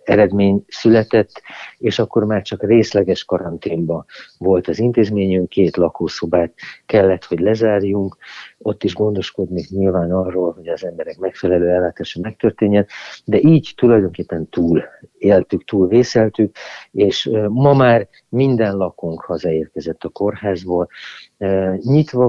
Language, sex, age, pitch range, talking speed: Hungarian, male, 50-69, 90-115 Hz, 115 wpm